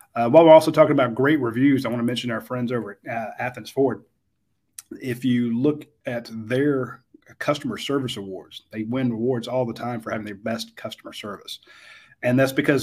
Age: 30-49